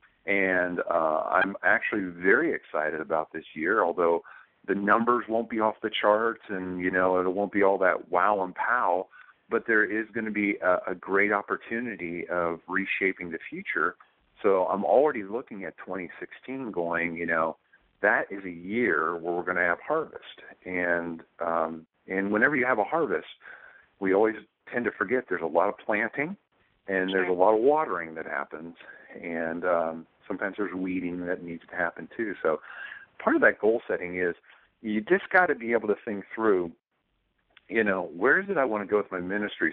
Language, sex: English, male